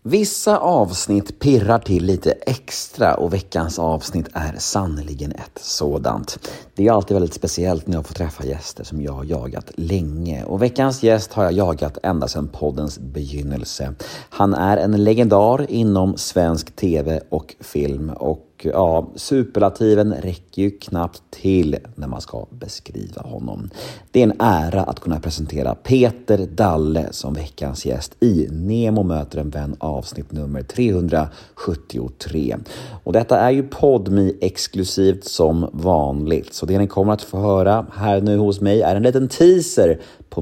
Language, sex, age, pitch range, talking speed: Swedish, male, 30-49, 80-105 Hz, 150 wpm